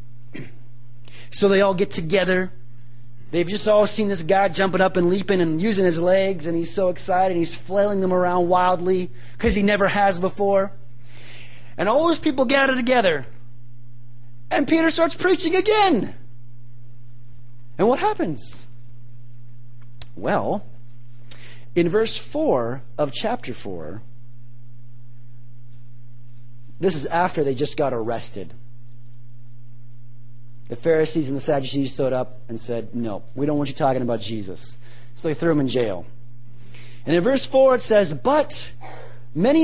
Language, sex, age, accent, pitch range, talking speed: English, male, 30-49, American, 120-185 Hz, 140 wpm